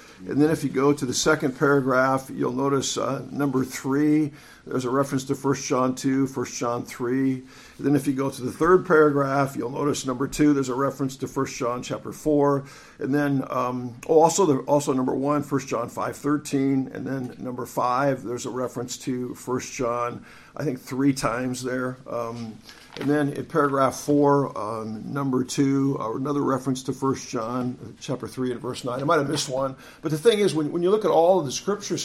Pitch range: 130-150 Hz